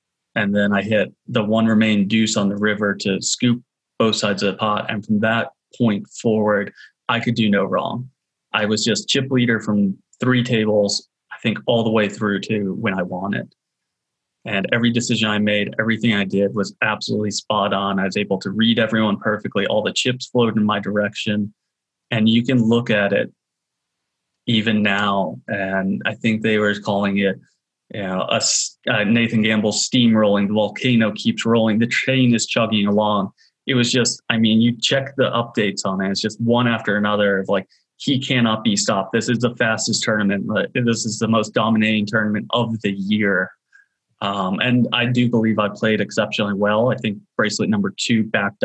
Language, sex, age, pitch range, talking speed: English, male, 30-49, 100-115 Hz, 190 wpm